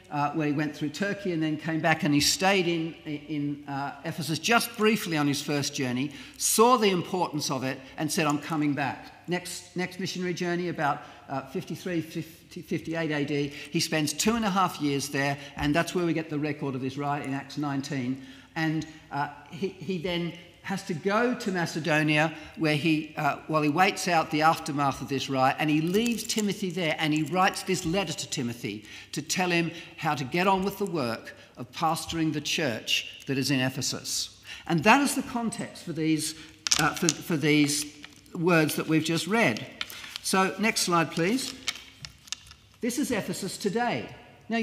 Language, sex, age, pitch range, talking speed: English, male, 50-69, 150-190 Hz, 185 wpm